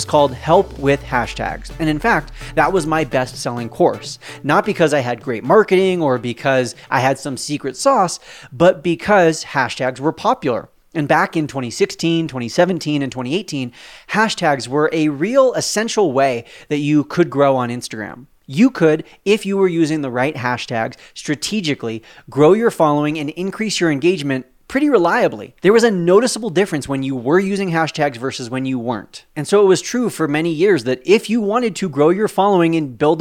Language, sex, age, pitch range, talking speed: English, male, 30-49, 135-180 Hz, 180 wpm